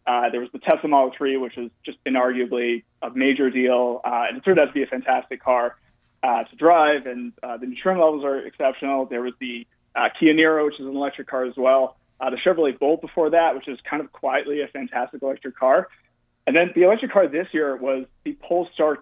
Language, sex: English, male